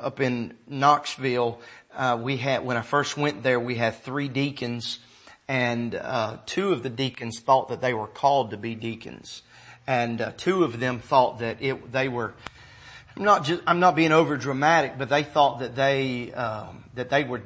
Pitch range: 115-145 Hz